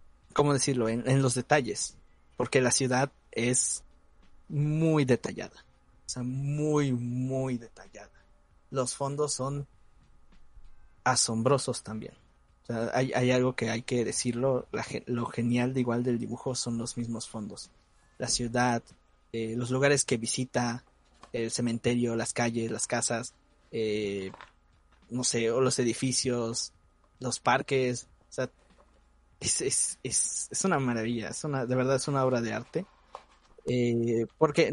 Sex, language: male, Spanish